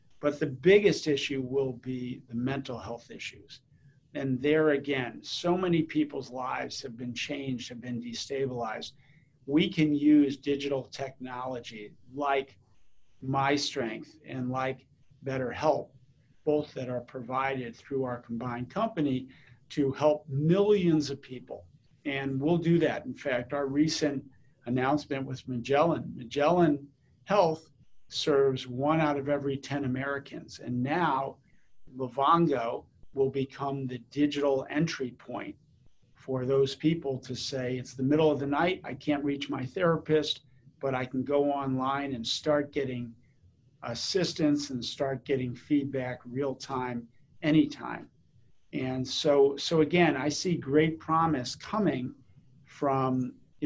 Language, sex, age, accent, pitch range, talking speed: English, male, 50-69, American, 130-145 Hz, 130 wpm